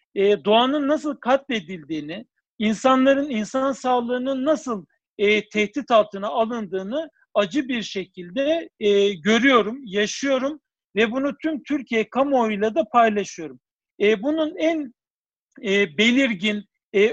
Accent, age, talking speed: native, 50-69, 105 wpm